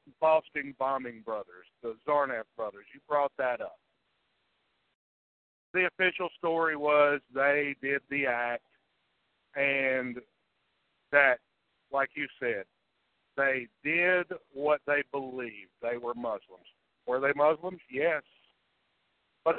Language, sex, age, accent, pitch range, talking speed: English, male, 50-69, American, 135-175 Hz, 110 wpm